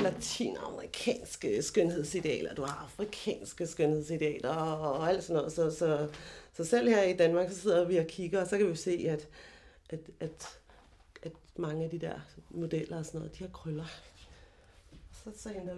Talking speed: 170 wpm